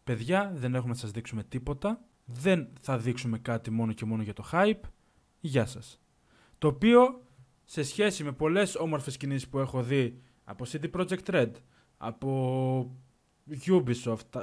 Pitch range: 130-170 Hz